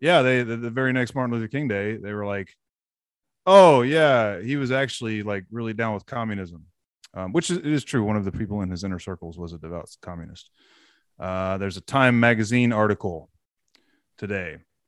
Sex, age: male, 30-49